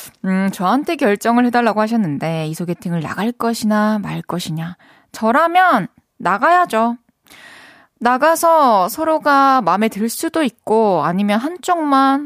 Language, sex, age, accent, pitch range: Korean, female, 20-39, native, 190-285 Hz